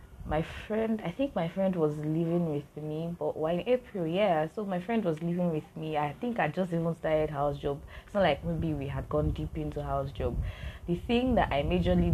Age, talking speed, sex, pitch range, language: 20-39, 225 wpm, female, 140-175 Hz, English